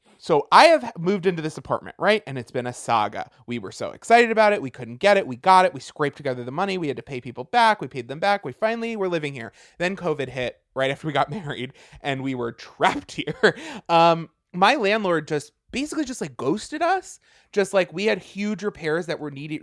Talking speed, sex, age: 235 wpm, male, 20-39